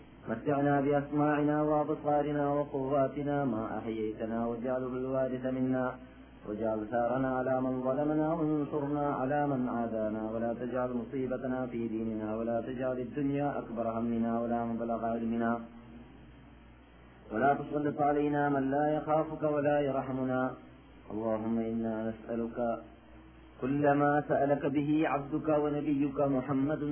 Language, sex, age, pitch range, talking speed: Malayalam, male, 30-49, 115-145 Hz, 110 wpm